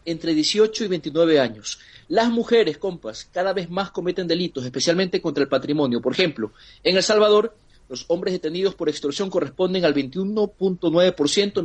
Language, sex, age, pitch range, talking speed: Spanish, male, 40-59, 150-210 Hz, 155 wpm